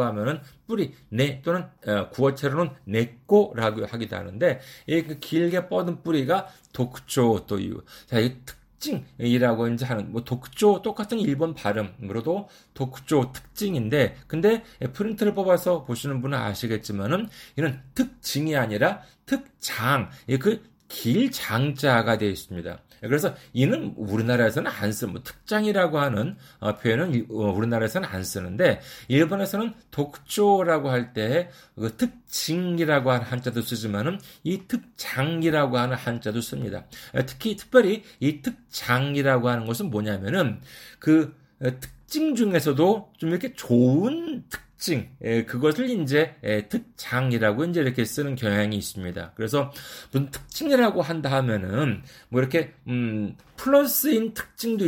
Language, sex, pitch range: Korean, male, 115-175 Hz